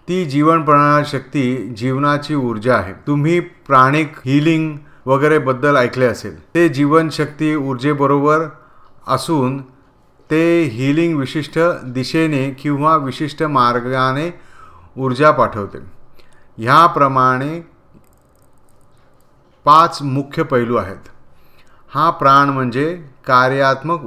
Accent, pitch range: native, 125-155 Hz